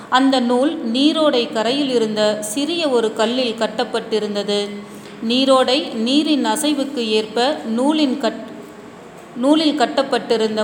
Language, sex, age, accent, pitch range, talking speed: Tamil, female, 30-49, native, 215-270 Hz, 95 wpm